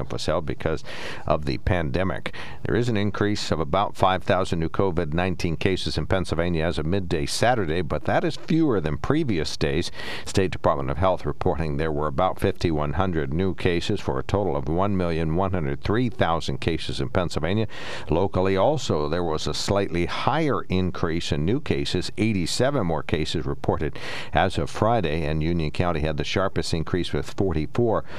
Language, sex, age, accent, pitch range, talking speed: English, male, 60-79, American, 75-95 Hz, 160 wpm